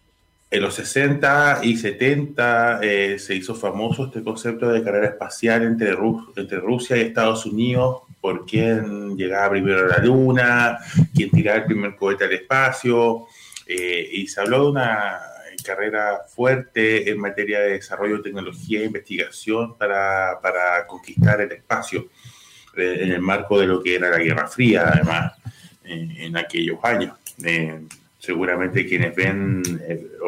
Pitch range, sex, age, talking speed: 95-135 Hz, male, 30-49, 150 wpm